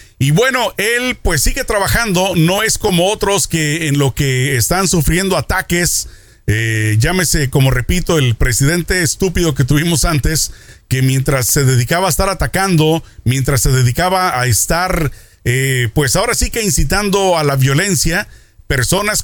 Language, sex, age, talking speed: Spanish, male, 40-59, 155 wpm